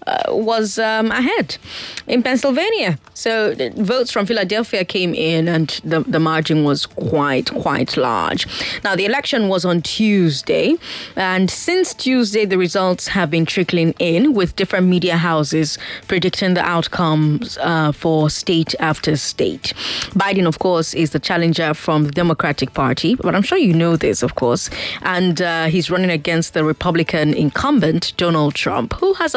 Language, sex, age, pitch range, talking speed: English, female, 20-39, 165-230 Hz, 160 wpm